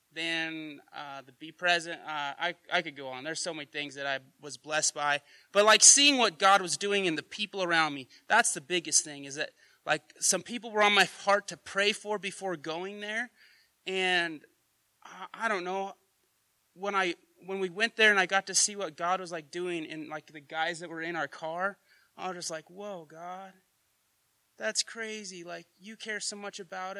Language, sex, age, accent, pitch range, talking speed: English, male, 20-39, American, 165-205 Hz, 210 wpm